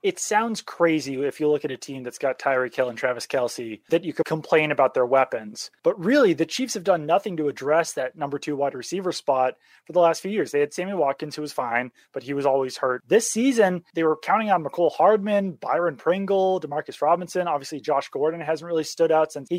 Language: English